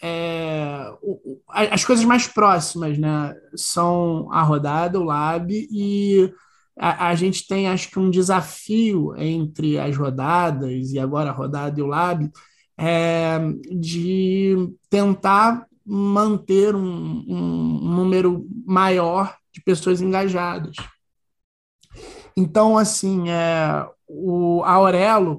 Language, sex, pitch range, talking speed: Portuguese, male, 160-195 Hz, 100 wpm